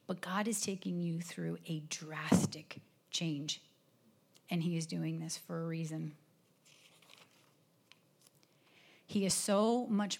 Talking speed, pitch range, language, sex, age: 125 wpm, 165-185 Hz, English, female, 40-59